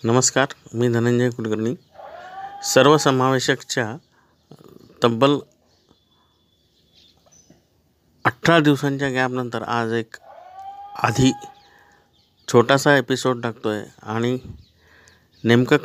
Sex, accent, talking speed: male, native, 70 wpm